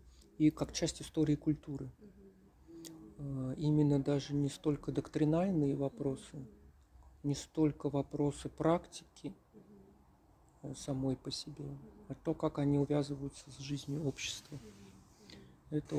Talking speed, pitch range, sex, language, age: 100 wpm, 135-160 Hz, male, Russian, 40-59